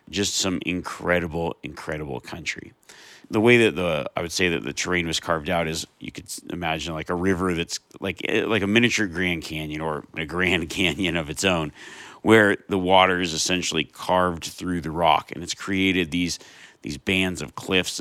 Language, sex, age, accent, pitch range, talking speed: English, male, 40-59, American, 80-100 Hz, 185 wpm